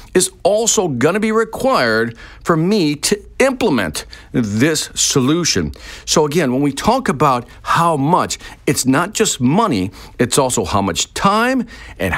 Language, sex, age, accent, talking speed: English, male, 50-69, American, 145 wpm